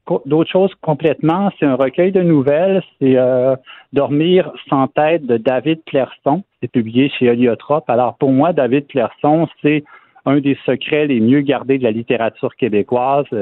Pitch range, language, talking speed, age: 120-150 Hz, French, 170 wpm, 50-69